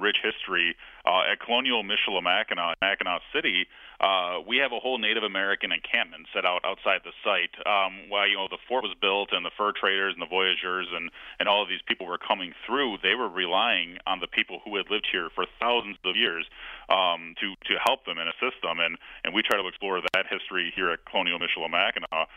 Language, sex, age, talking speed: English, male, 40-59, 215 wpm